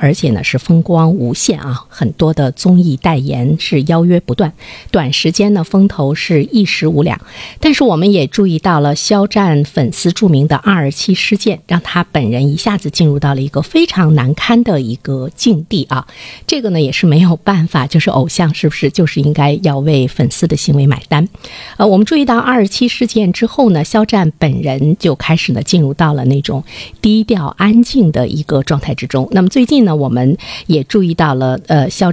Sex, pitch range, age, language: female, 140-190 Hz, 50-69, Chinese